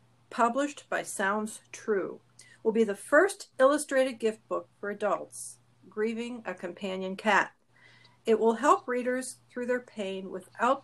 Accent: American